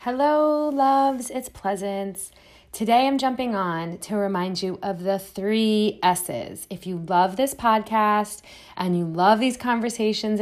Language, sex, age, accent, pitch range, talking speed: English, female, 30-49, American, 185-225 Hz, 145 wpm